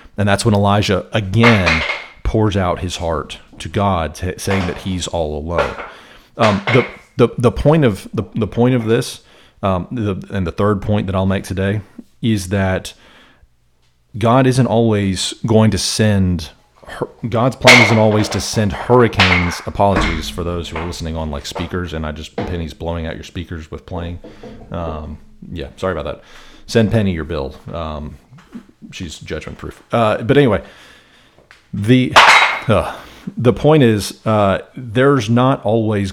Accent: American